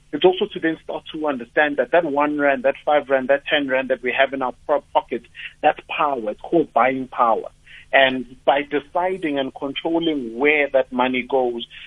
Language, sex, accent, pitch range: English, male, South African, 130-150 Hz